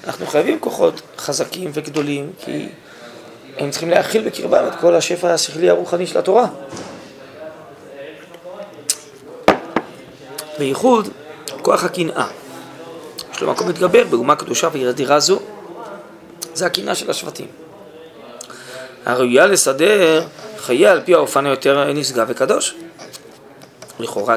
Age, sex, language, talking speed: 20-39, male, Hebrew, 105 wpm